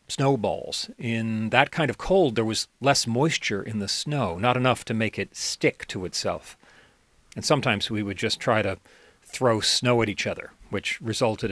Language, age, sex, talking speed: English, 40-59, male, 180 wpm